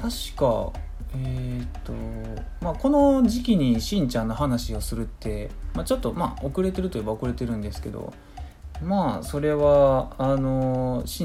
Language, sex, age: Japanese, male, 20-39